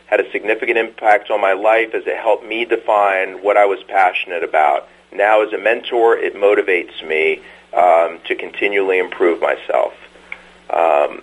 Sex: male